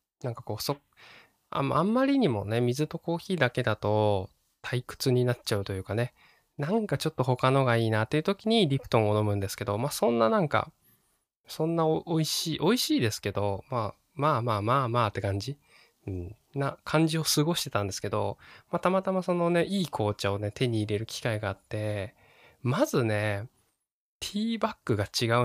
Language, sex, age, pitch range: Japanese, male, 20-39, 110-160 Hz